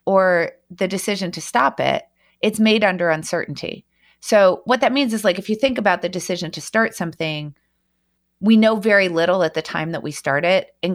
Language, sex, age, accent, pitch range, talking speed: English, female, 30-49, American, 160-205 Hz, 205 wpm